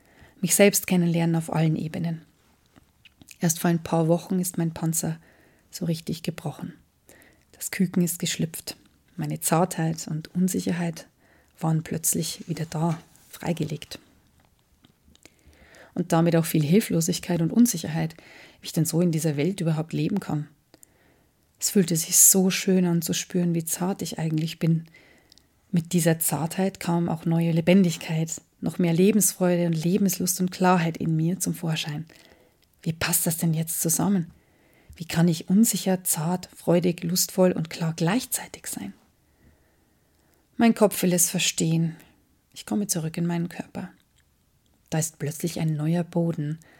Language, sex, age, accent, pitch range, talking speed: German, female, 30-49, German, 160-180 Hz, 145 wpm